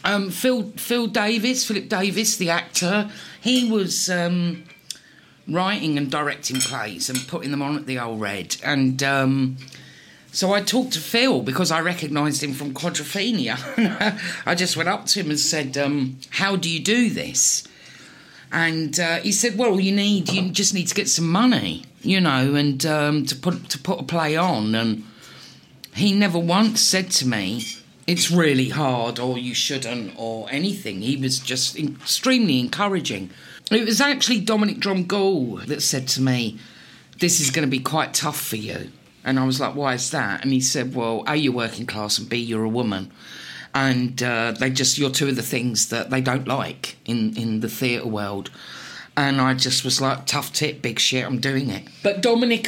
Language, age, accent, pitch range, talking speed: English, 50-69, British, 130-190 Hz, 190 wpm